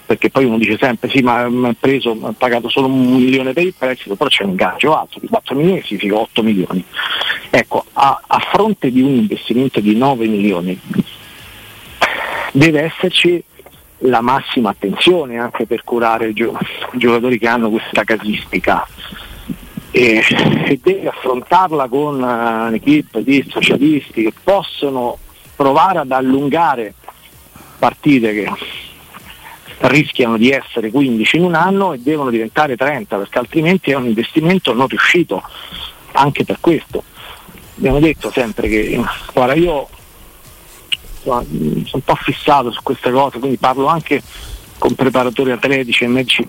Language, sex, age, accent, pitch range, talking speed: Italian, male, 50-69, native, 115-145 Hz, 145 wpm